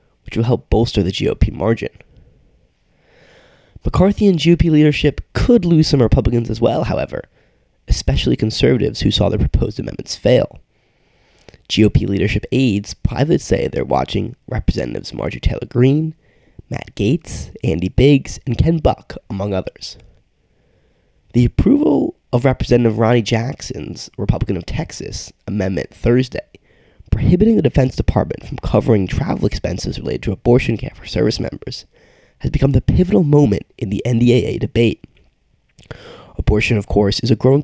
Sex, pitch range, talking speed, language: male, 105-135 Hz, 140 wpm, English